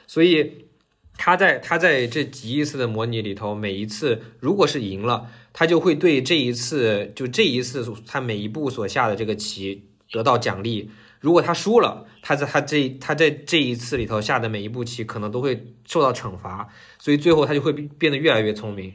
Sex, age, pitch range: male, 20-39, 105-130 Hz